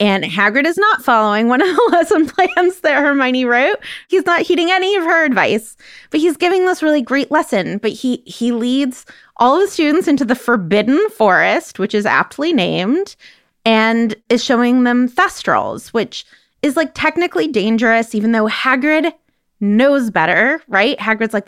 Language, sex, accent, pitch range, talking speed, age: English, female, American, 200-285 Hz, 170 wpm, 20-39